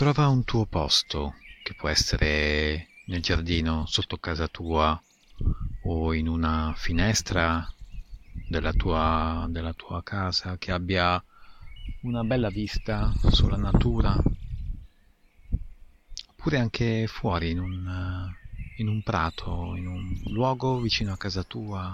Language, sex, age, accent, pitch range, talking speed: Italian, male, 30-49, native, 85-100 Hz, 110 wpm